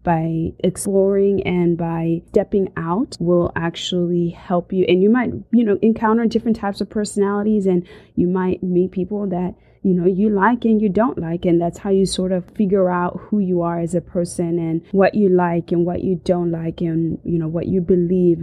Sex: female